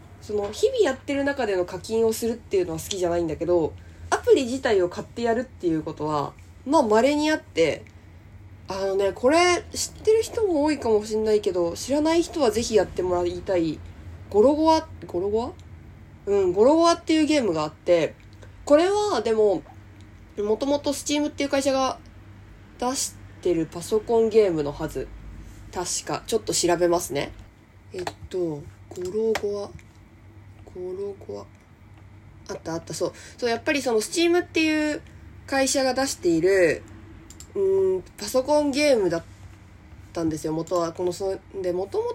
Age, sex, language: 20-39, female, Japanese